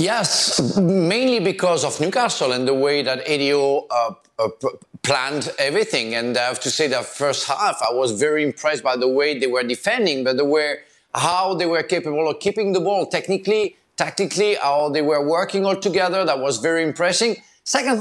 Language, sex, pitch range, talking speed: English, male, 150-195 Hz, 190 wpm